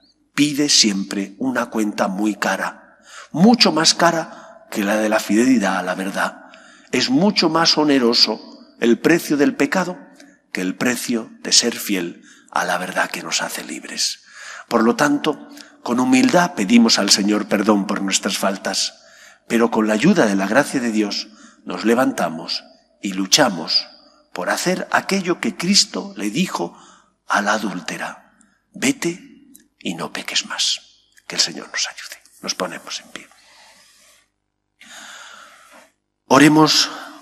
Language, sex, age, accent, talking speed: English, male, 50-69, Spanish, 145 wpm